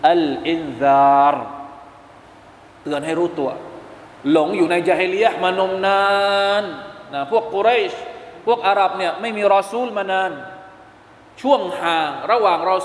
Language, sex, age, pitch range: Thai, male, 20-39, 145-230 Hz